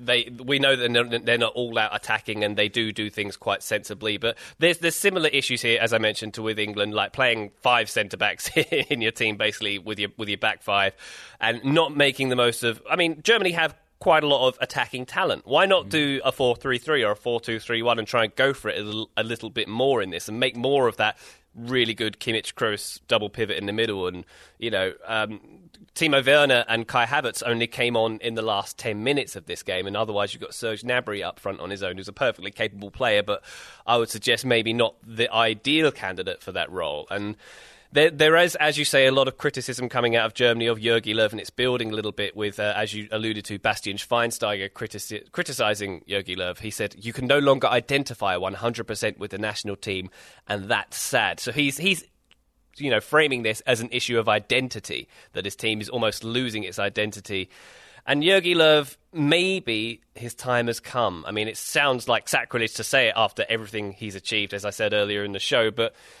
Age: 20-39